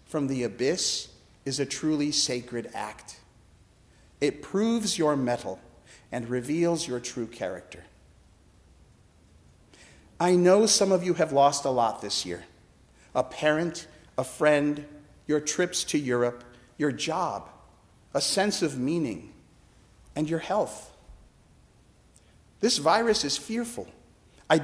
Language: English